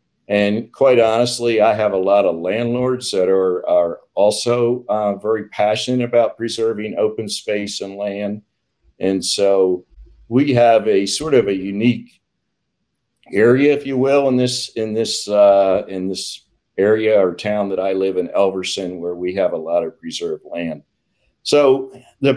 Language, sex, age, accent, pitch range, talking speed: English, male, 50-69, American, 95-120 Hz, 160 wpm